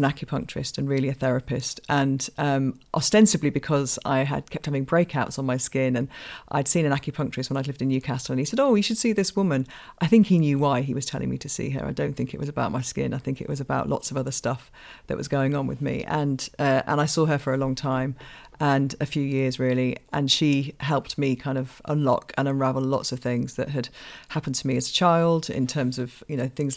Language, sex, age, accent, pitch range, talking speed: English, female, 40-59, British, 135-150 Hz, 255 wpm